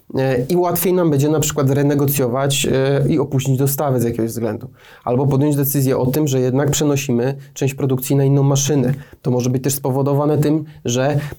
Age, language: 30-49, Polish